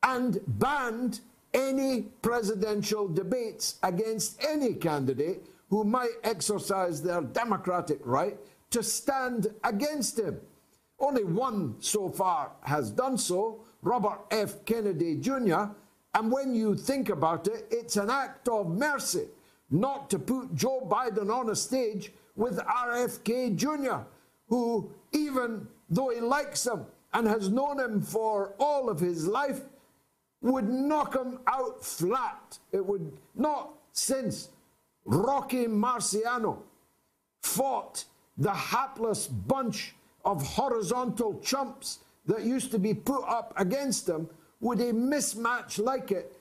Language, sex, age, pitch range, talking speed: English, male, 60-79, 200-255 Hz, 125 wpm